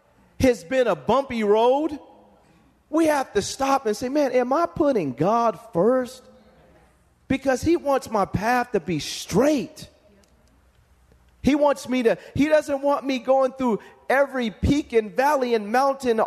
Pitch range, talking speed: 200-275 Hz, 150 wpm